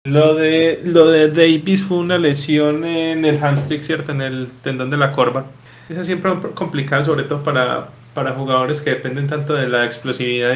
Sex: male